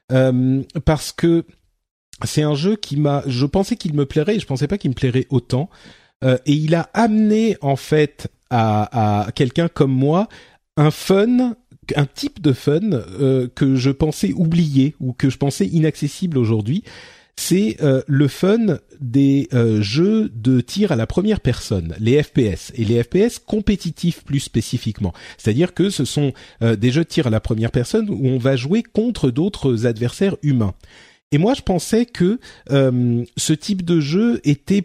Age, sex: 40-59, male